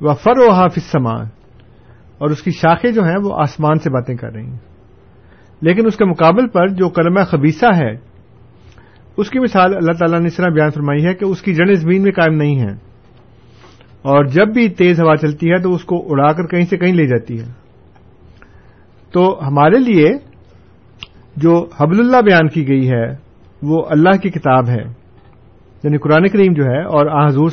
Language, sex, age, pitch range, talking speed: Urdu, male, 50-69, 120-175 Hz, 190 wpm